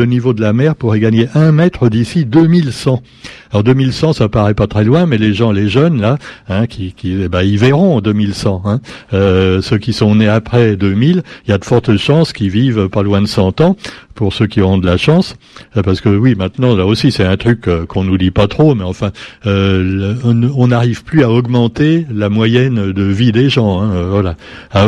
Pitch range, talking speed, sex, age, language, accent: 105-145 Hz, 220 wpm, male, 60-79, French, French